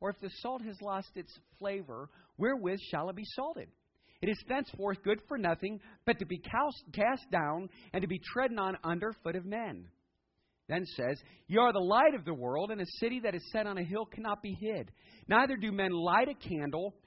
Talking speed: 210 wpm